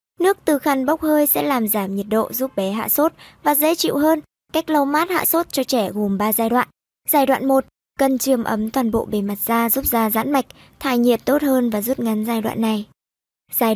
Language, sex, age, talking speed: Vietnamese, male, 20-39, 240 wpm